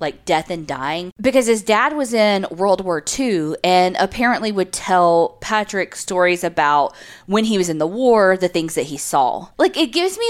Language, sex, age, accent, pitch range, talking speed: English, female, 20-39, American, 160-210 Hz, 200 wpm